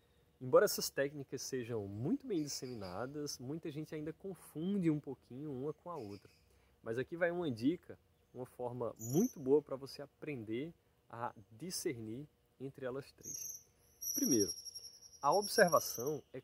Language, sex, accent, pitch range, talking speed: Portuguese, male, Brazilian, 120-185 Hz, 140 wpm